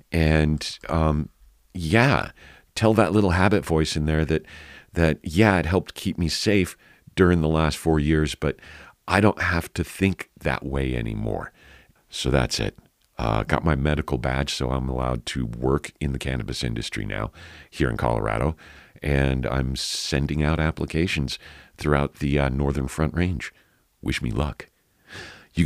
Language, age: English, 40-59